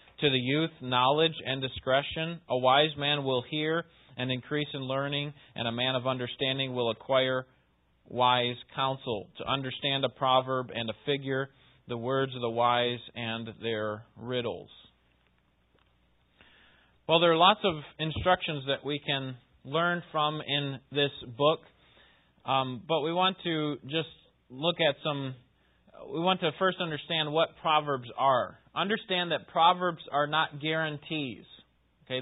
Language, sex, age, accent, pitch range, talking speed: English, male, 30-49, American, 125-155 Hz, 145 wpm